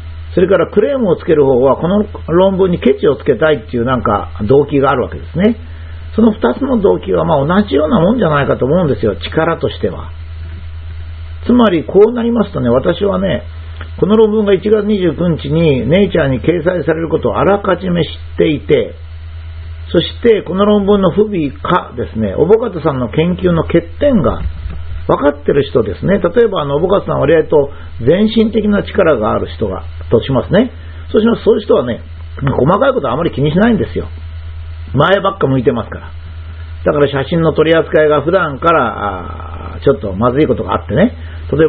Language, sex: Japanese, male